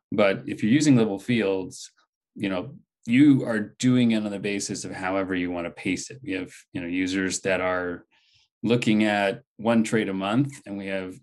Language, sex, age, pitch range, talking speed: English, male, 30-49, 95-120 Hz, 205 wpm